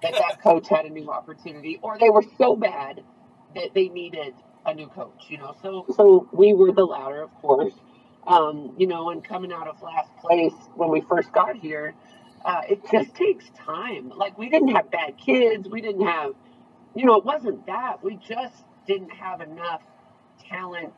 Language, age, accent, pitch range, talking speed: English, 40-59, American, 160-215 Hz, 190 wpm